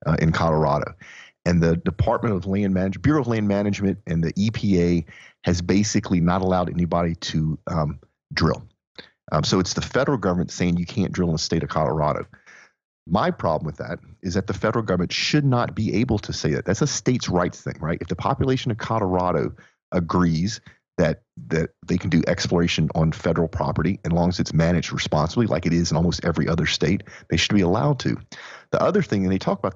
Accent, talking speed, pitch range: American, 205 wpm, 85-110 Hz